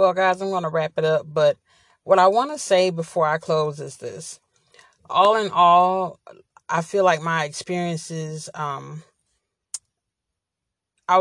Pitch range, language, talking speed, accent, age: 150-170 Hz, English, 145 wpm, American, 30-49